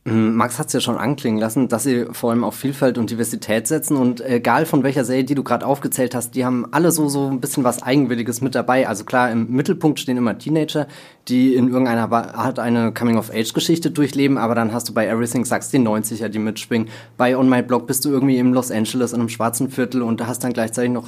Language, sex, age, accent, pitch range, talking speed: German, male, 20-39, German, 115-135 Hz, 235 wpm